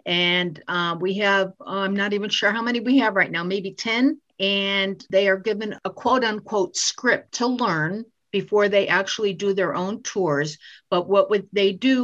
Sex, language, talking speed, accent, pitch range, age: female, English, 185 wpm, American, 195-265 Hz, 50-69